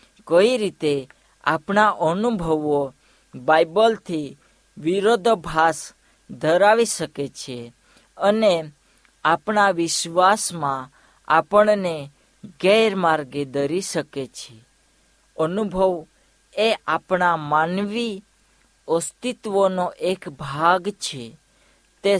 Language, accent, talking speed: Hindi, native, 65 wpm